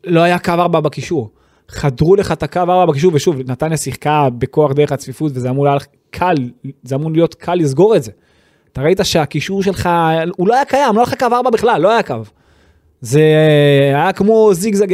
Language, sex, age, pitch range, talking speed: Hebrew, male, 20-39, 140-175 Hz, 200 wpm